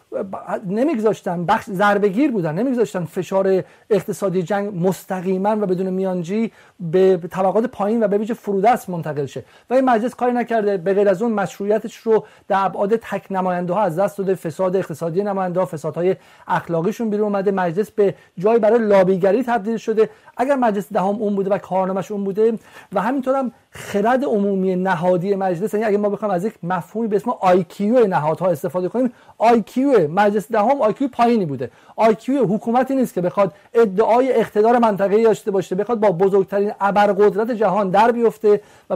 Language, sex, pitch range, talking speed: Persian, male, 190-225 Hz, 160 wpm